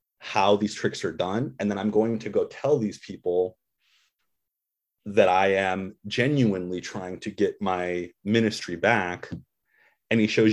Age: 30-49